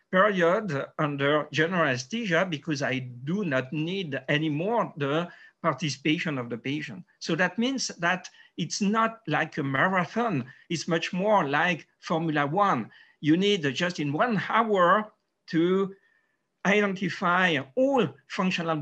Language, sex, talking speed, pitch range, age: English, male, 130 wpm, 140-190 Hz, 50-69